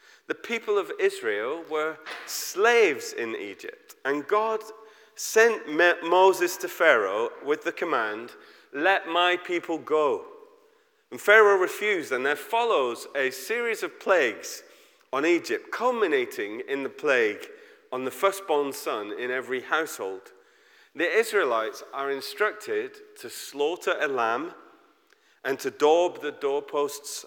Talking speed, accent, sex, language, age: 125 wpm, British, male, English, 30-49